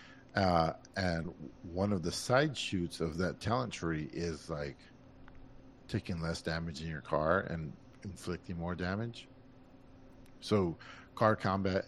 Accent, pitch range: American, 80-105 Hz